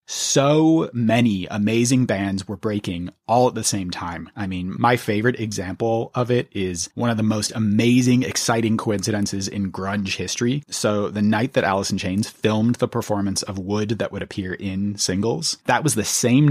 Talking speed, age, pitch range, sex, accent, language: 180 wpm, 30-49, 100-125 Hz, male, American, English